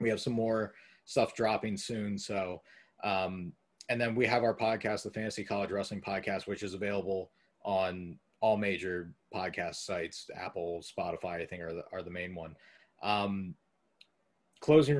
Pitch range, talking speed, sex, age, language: 100-120 Hz, 160 wpm, male, 30-49, English